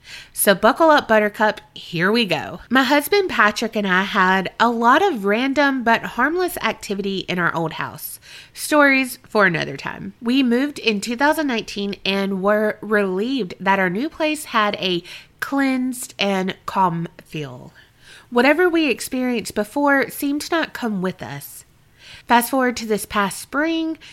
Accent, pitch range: American, 185-260 Hz